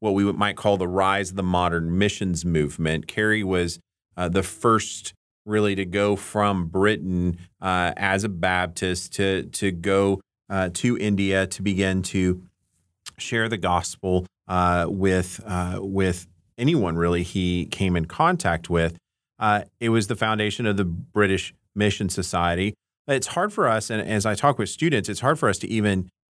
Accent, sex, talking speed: American, male, 170 wpm